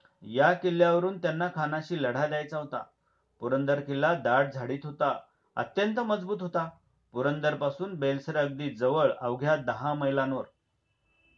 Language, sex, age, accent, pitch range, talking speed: Marathi, male, 40-59, native, 135-175 Hz, 115 wpm